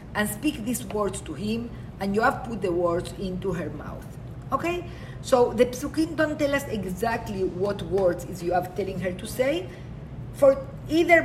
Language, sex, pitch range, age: English, female, 180-265 Hz, 50-69